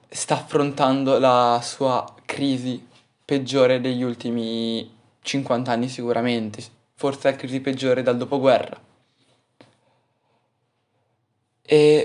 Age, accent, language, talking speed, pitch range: 20-39, native, Italian, 90 wpm, 120-135 Hz